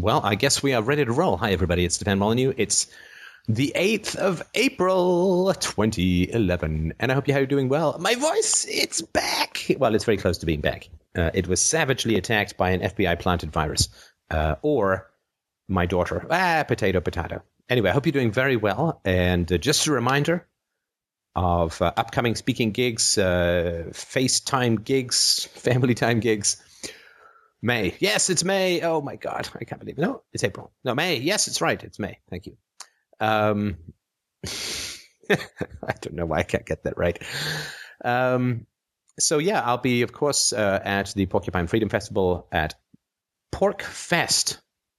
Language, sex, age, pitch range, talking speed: English, male, 30-49, 90-140 Hz, 165 wpm